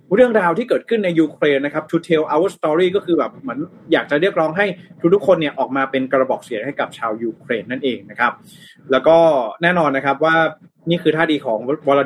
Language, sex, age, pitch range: Thai, male, 20-39, 135-175 Hz